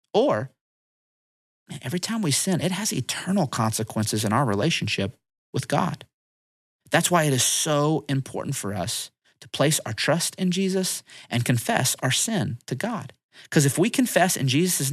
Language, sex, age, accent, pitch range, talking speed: English, male, 30-49, American, 115-185 Hz, 160 wpm